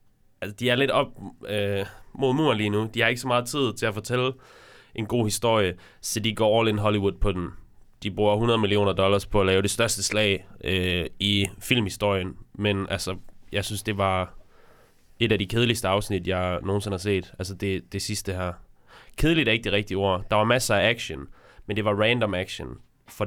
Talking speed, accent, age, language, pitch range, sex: 210 wpm, native, 20-39, Danish, 95-110 Hz, male